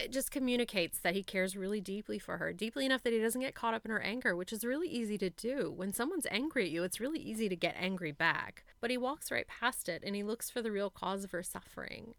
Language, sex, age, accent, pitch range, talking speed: English, female, 30-49, American, 185-235 Hz, 270 wpm